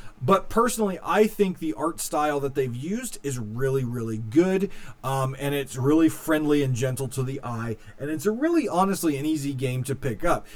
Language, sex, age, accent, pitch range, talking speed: English, male, 30-49, American, 130-185 Hz, 200 wpm